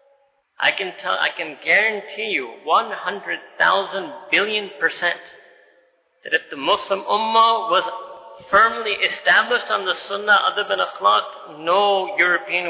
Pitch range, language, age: 180-290 Hz, English, 40-59